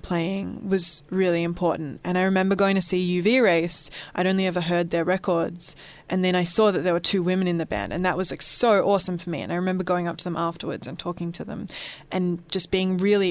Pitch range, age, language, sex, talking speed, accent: 170-185 Hz, 20-39, English, female, 240 wpm, Australian